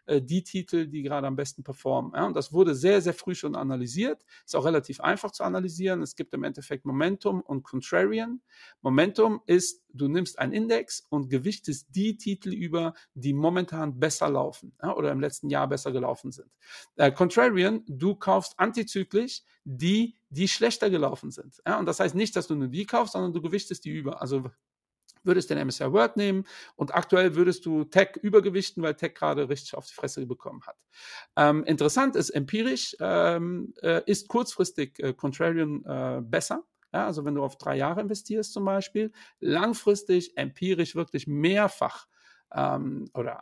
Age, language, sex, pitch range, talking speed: 50-69, German, male, 150-205 Hz, 170 wpm